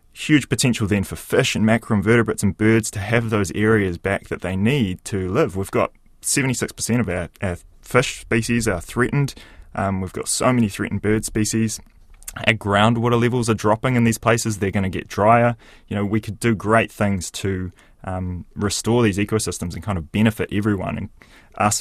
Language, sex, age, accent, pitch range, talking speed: English, male, 20-39, Australian, 90-115 Hz, 190 wpm